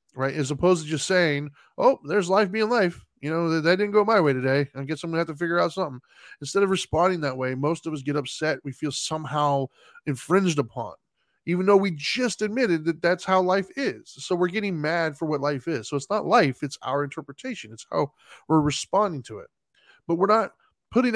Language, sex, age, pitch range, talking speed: English, male, 10-29, 145-190 Hz, 225 wpm